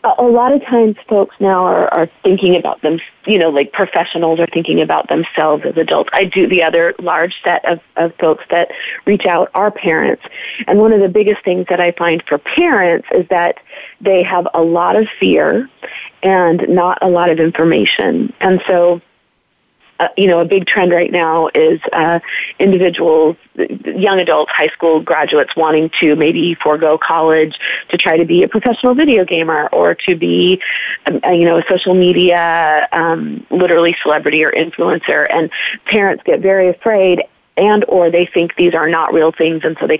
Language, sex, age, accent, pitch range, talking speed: English, female, 30-49, American, 165-205 Hz, 180 wpm